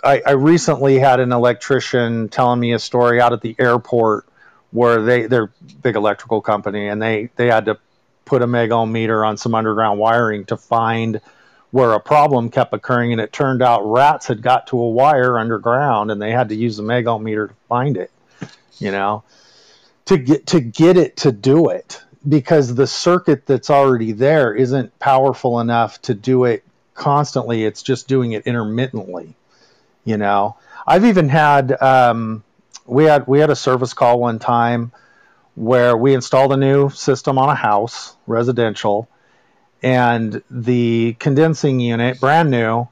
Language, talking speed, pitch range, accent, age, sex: English, 170 wpm, 115-135 Hz, American, 40-59, male